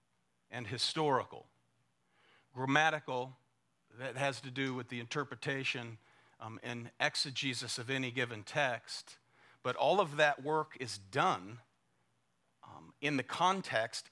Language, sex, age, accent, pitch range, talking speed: English, male, 40-59, American, 120-160 Hz, 120 wpm